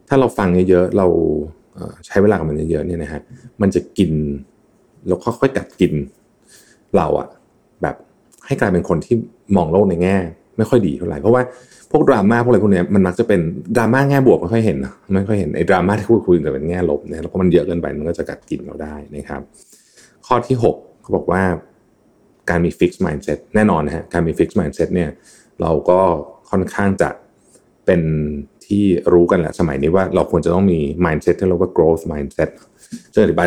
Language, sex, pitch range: Thai, male, 80-105 Hz